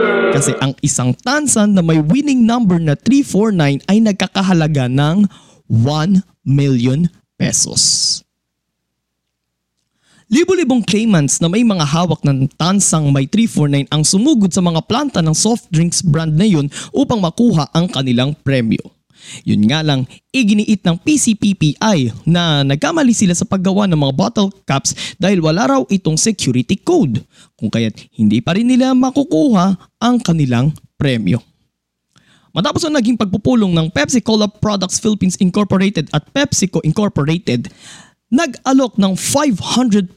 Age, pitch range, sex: 20-39, 150-230 Hz, male